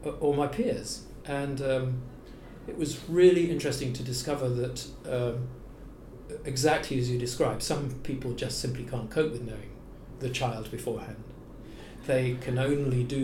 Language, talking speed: English, 145 wpm